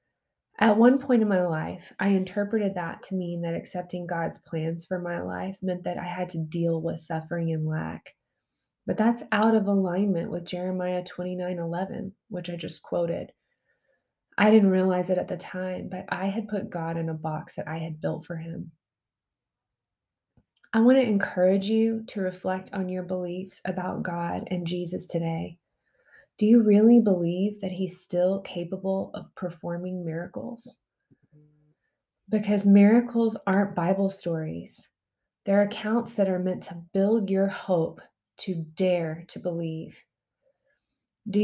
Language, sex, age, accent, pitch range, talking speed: English, female, 20-39, American, 170-205 Hz, 155 wpm